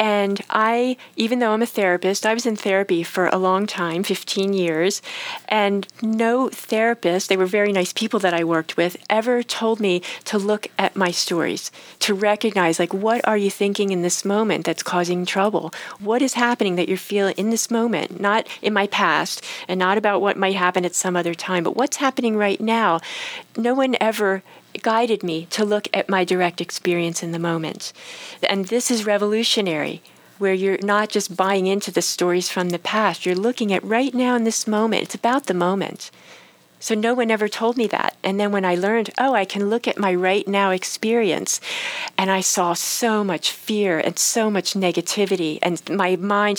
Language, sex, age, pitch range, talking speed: English, female, 40-59, 185-225 Hz, 195 wpm